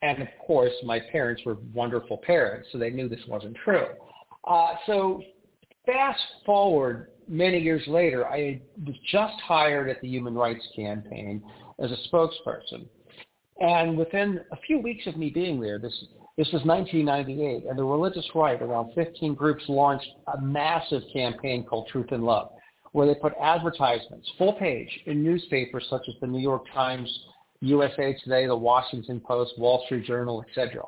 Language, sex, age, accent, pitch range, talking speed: English, male, 50-69, American, 125-165 Hz, 165 wpm